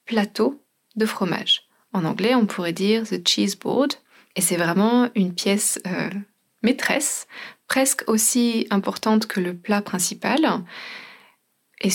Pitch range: 190-235 Hz